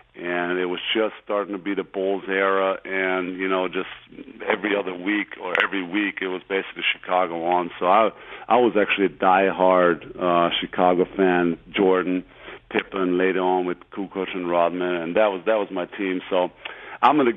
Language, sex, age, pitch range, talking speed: English, male, 50-69, 90-100 Hz, 185 wpm